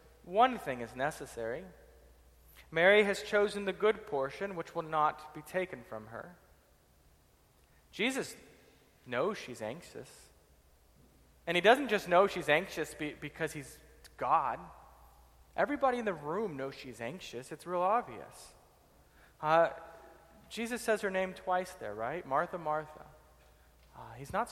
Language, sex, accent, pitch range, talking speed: English, male, American, 135-180 Hz, 130 wpm